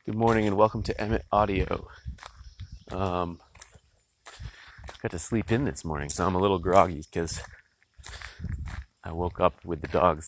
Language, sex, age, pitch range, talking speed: English, male, 30-49, 85-105 Hz, 150 wpm